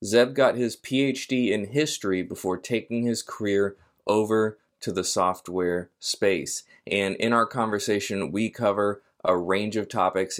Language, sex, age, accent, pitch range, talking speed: English, male, 20-39, American, 95-115 Hz, 145 wpm